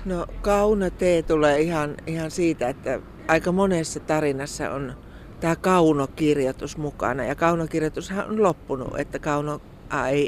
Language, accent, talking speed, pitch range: Finnish, native, 130 wpm, 145-180 Hz